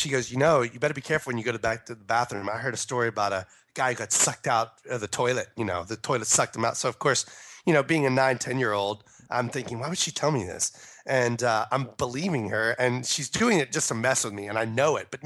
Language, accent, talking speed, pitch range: English, American, 285 wpm, 115-140 Hz